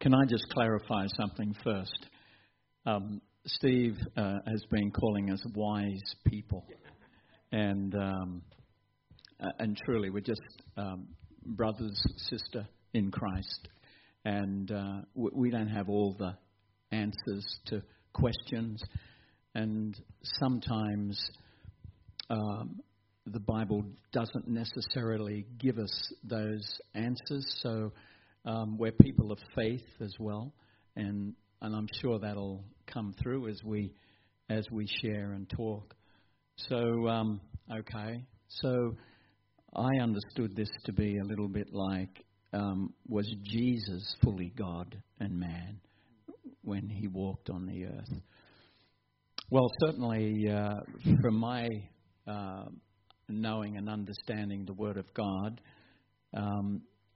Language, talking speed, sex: English, 115 wpm, male